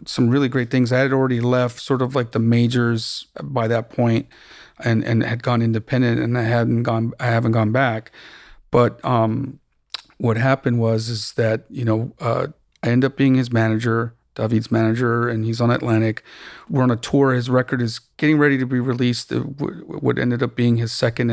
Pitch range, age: 115-130 Hz, 40-59